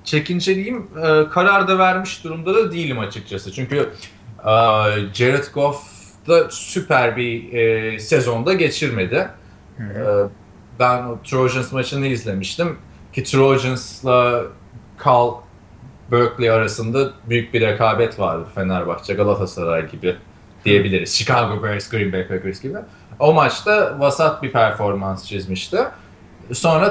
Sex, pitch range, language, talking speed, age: male, 105-145 Hz, Turkish, 105 wpm, 30-49